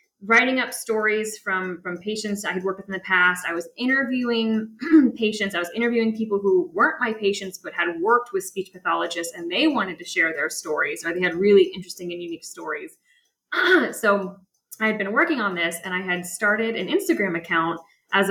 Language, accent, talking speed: English, American, 200 wpm